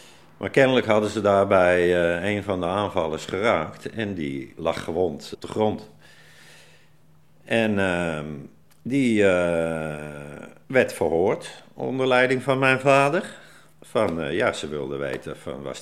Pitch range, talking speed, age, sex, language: 80-105 Hz, 140 wpm, 50-69, male, Dutch